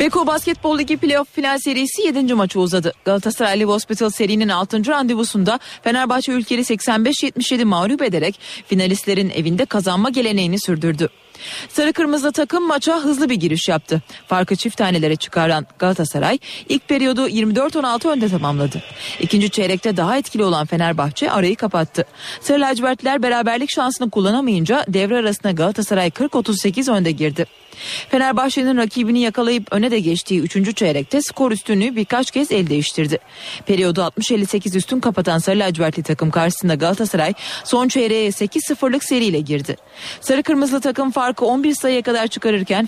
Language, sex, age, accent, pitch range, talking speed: Turkish, female, 30-49, native, 180-255 Hz, 135 wpm